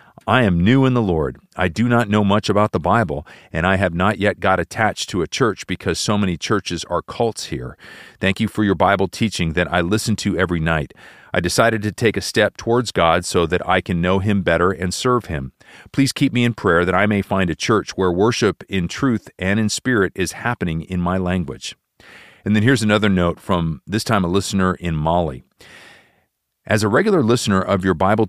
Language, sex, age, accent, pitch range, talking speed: English, male, 40-59, American, 90-110 Hz, 220 wpm